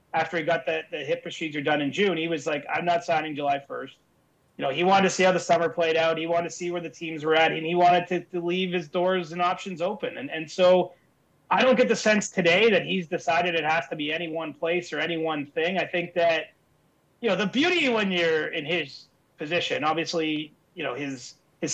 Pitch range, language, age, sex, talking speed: 150-185 Hz, English, 30-49, male, 245 wpm